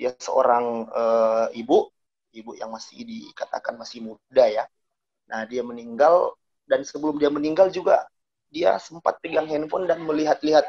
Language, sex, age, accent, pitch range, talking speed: Indonesian, male, 30-49, native, 135-190 Hz, 135 wpm